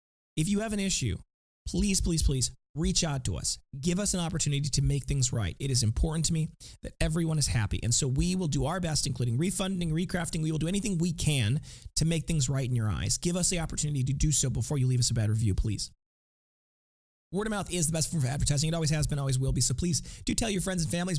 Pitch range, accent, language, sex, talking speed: 130-165 Hz, American, English, male, 260 wpm